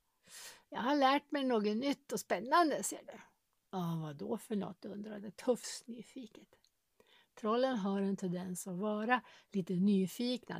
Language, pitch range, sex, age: Swedish, 205-285 Hz, female, 60-79